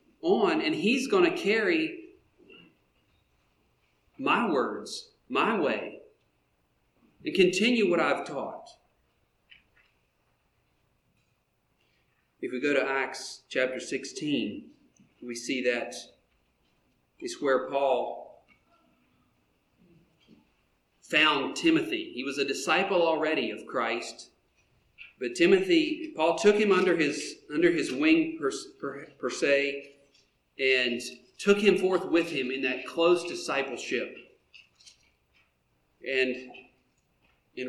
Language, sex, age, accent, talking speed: English, male, 40-59, American, 95 wpm